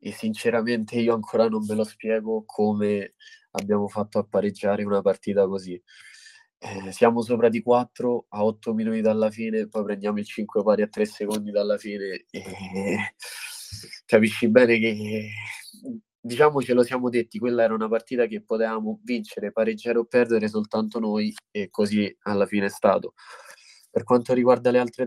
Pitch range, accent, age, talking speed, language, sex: 105-120 Hz, native, 20-39, 165 wpm, Italian, male